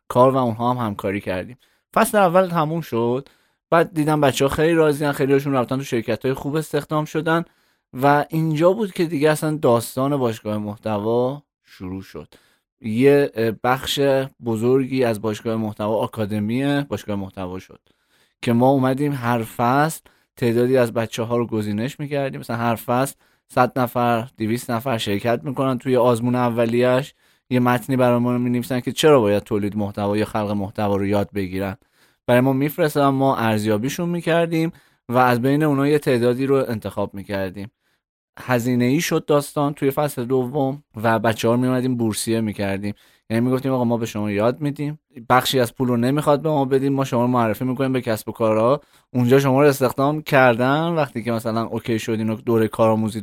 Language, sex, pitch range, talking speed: Persian, male, 110-140 Hz, 175 wpm